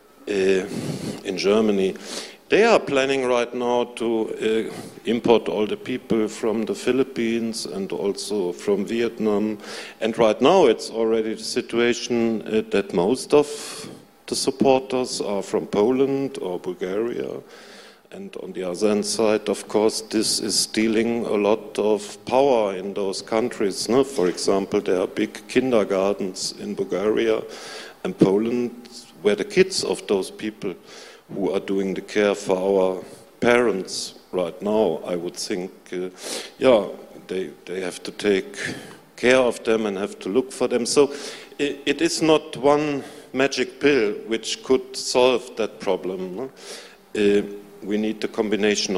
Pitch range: 110-135 Hz